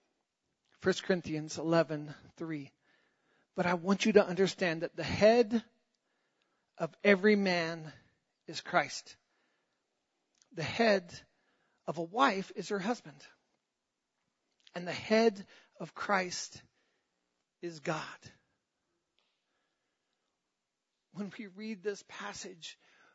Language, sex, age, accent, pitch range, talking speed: English, male, 40-59, American, 195-295 Hz, 100 wpm